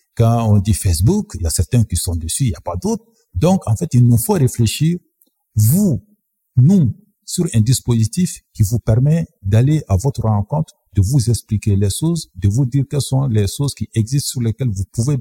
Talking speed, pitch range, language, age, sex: 210 wpm, 105-145 Hz, French, 50-69, male